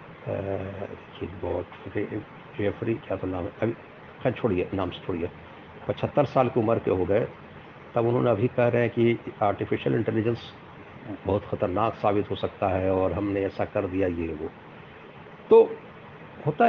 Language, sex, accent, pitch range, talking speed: Hindi, male, native, 105-125 Hz, 160 wpm